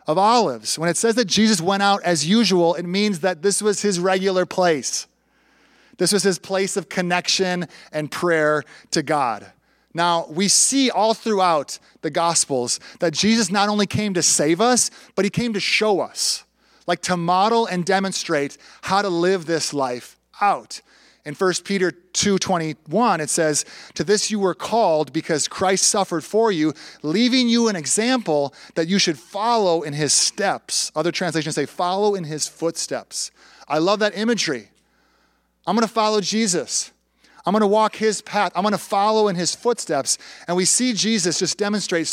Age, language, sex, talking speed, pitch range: 30-49, English, male, 175 wpm, 165-215 Hz